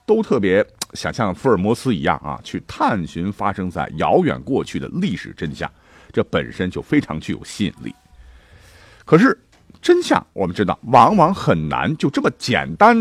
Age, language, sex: 50-69, Chinese, male